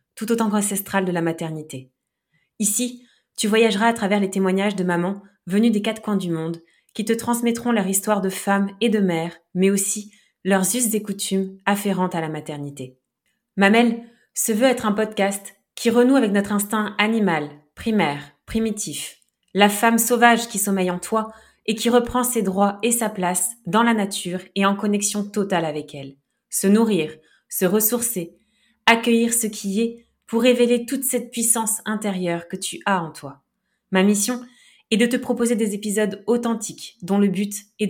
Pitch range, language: 185-225 Hz, French